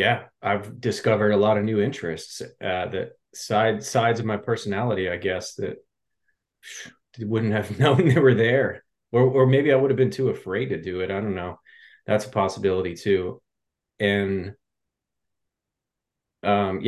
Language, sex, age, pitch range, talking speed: English, male, 30-49, 95-115 Hz, 160 wpm